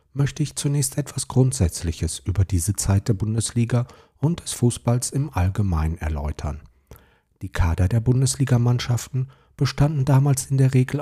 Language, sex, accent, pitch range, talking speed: German, male, German, 90-130 Hz, 135 wpm